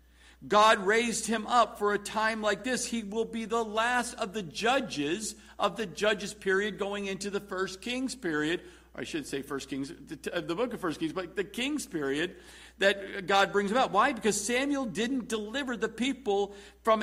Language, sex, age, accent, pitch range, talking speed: English, male, 50-69, American, 185-235 Hz, 185 wpm